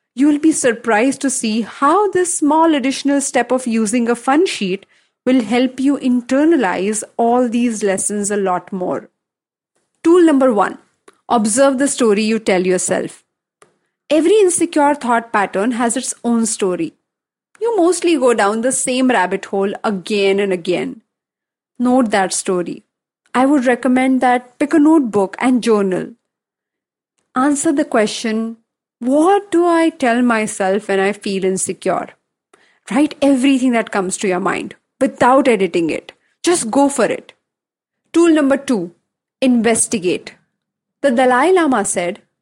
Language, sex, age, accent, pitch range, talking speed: English, female, 30-49, Indian, 205-280 Hz, 140 wpm